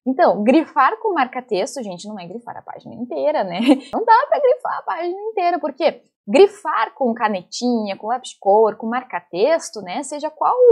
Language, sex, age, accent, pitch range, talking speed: Portuguese, female, 10-29, Brazilian, 205-295 Hz, 175 wpm